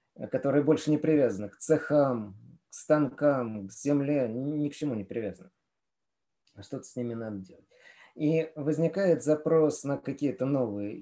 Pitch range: 120-160 Hz